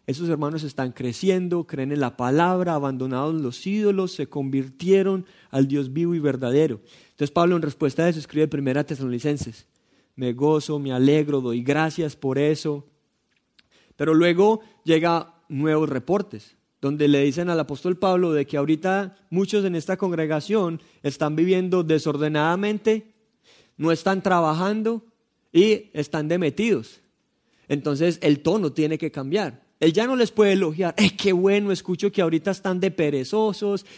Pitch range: 150-190 Hz